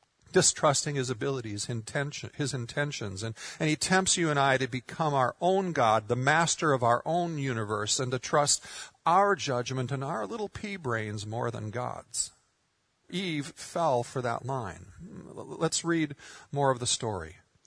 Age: 50-69